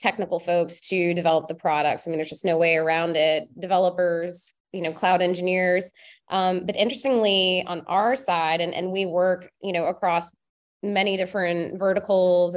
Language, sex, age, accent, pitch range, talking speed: English, female, 20-39, American, 170-190 Hz, 165 wpm